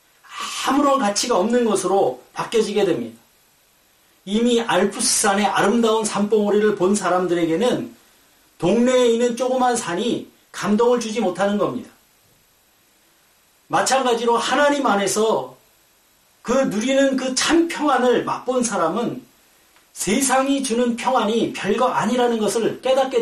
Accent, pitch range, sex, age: native, 215-260 Hz, male, 40-59